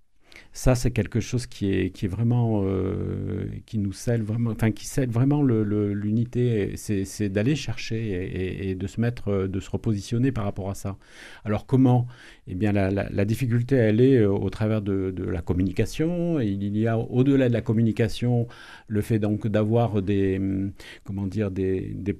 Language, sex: French, male